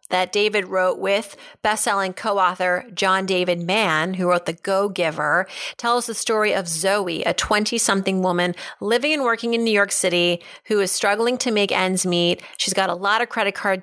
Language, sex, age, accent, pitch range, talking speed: English, female, 30-49, American, 180-225 Hz, 180 wpm